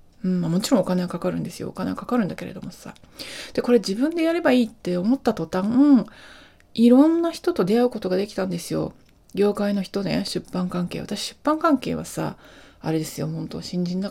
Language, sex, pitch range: Japanese, female, 175-250 Hz